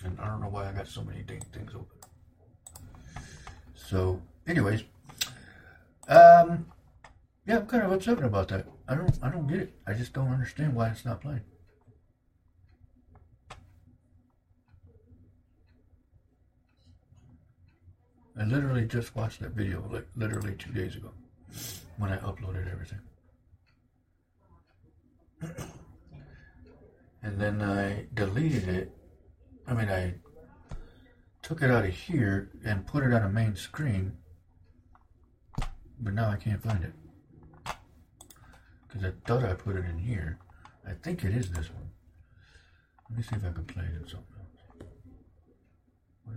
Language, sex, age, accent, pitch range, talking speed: English, male, 60-79, American, 85-115 Hz, 135 wpm